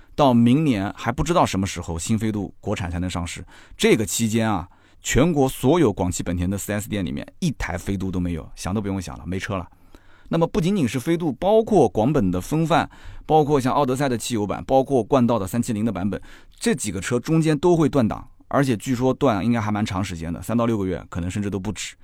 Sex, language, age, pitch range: male, Chinese, 20-39, 95-130 Hz